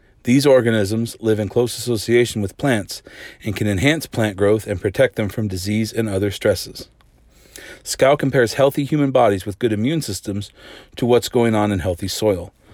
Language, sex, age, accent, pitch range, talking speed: English, male, 40-59, American, 100-120 Hz, 175 wpm